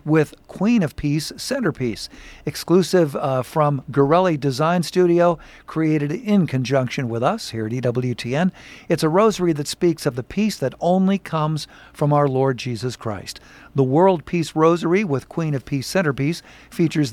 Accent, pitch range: American, 135-170 Hz